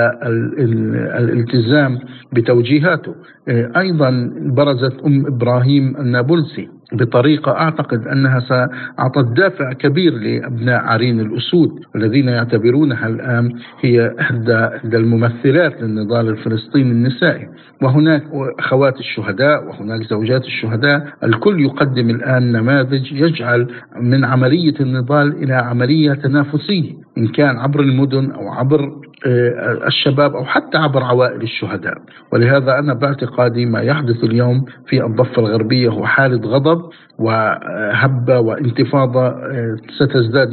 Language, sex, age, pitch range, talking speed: Arabic, male, 50-69, 120-150 Hz, 105 wpm